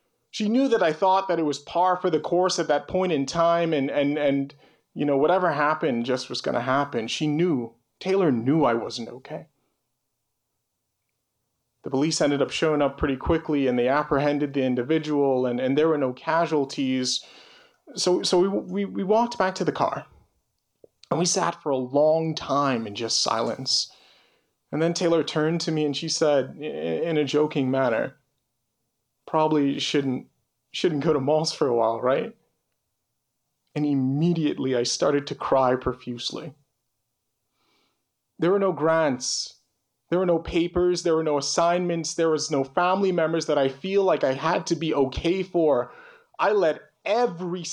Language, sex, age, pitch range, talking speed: English, male, 30-49, 135-170 Hz, 170 wpm